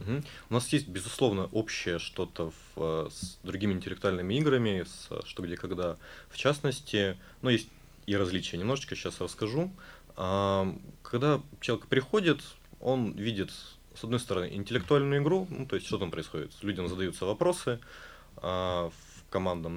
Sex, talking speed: male, 130 wpm